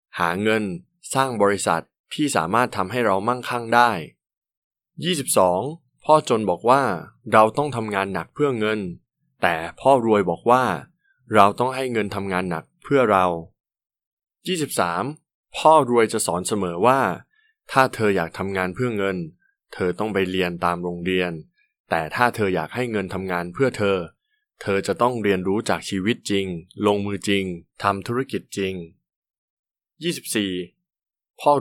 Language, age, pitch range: Thai, 20-39, 95-125 Hz